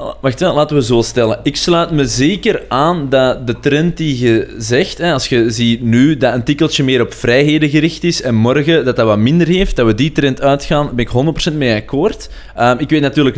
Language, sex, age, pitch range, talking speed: Dutch, male, 20-39, 120-150 Hz, 230 wpm